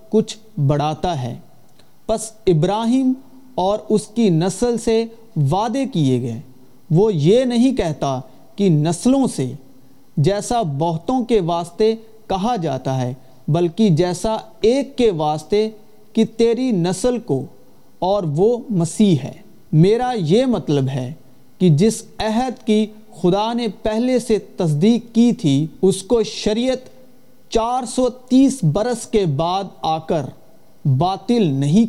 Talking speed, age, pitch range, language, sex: 130 wpm, 40-59, 160-225 Hz, Urdu, male